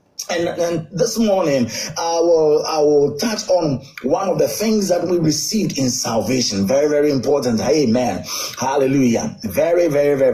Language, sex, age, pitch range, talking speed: English, male, 30-49, 135-195 Hz, 155 wpm